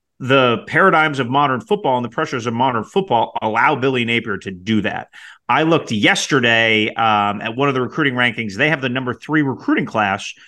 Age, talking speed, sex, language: 30-49, 195 wpm, male, English